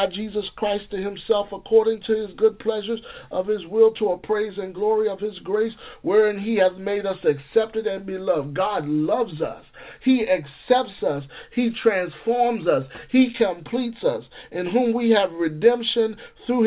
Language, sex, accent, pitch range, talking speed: English, male, American, 190-230 Hz, 165 wpm